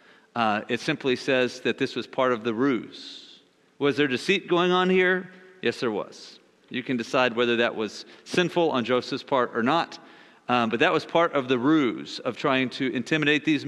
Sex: male